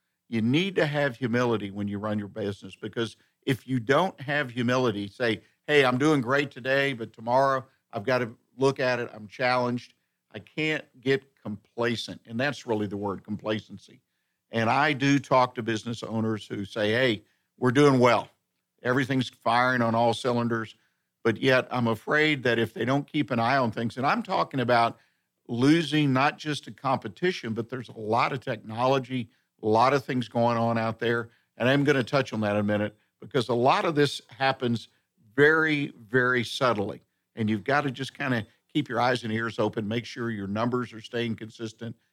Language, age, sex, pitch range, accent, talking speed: English, 50-69, male, 110-135 Hz, American, 190 wpm